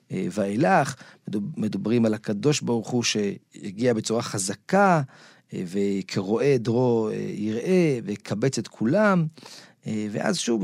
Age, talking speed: 40-59, 100 wpm